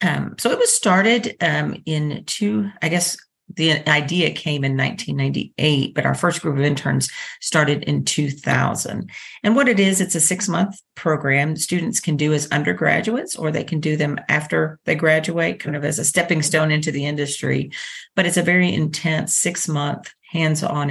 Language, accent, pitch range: English, American, 145-175 Hz